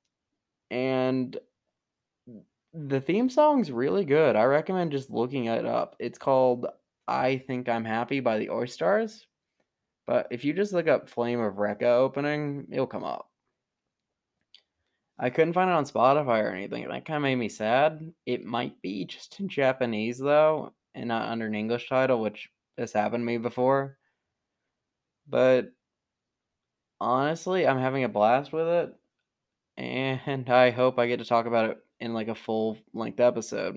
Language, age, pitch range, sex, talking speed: English, 20-39, 110-135 Hz, male, 160 wpm